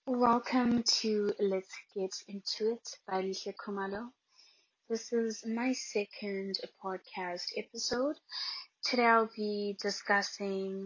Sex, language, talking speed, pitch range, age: female, English, 105 wpm, 185-235 Hz, 20-39